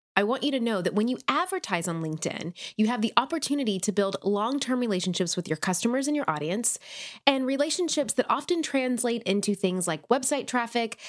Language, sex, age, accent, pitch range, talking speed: English, female, 20-39, American, 190-255 Hz, 190 wpm